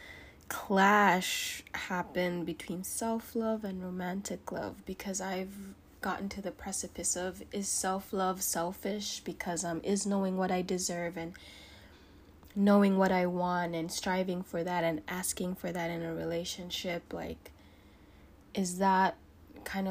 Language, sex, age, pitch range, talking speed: English, female, 20-39, 165-195 Hz, 135 wpm